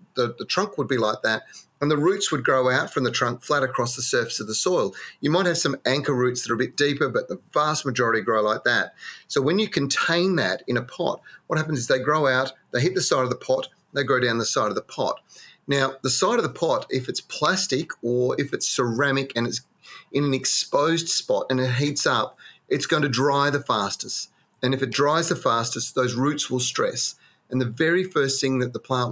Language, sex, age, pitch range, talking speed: English, male, 30-49, 120-145 Hz, 240 wpm